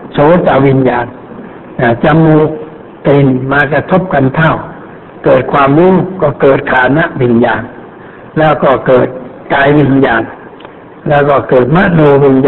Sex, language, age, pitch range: male, Thai, 60-79, 135-165 Hz